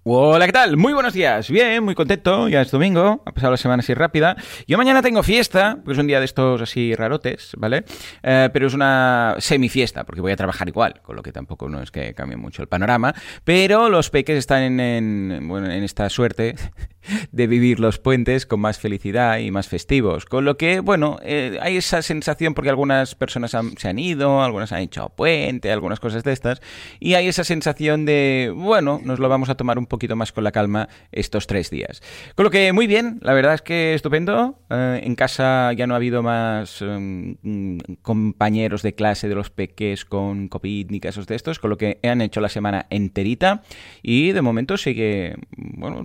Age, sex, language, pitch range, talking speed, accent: 30-49, male, Spanish, 100-145 Hz, 205 wpm, Spanish